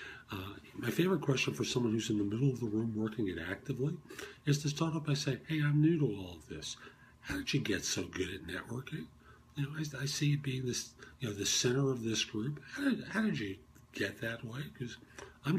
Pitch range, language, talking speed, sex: 110-155 Hz, English, 245 wpm, male